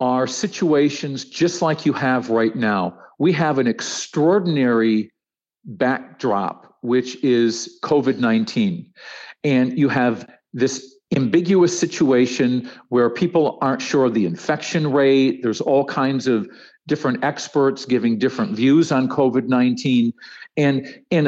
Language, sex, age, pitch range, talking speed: English, male, 50-69, 125-160 Hz, 120 wpm